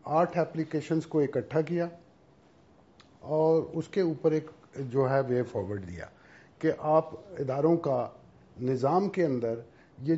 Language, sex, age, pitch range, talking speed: Urdu, male, 50-69, 120-155 Hz, 135 wpm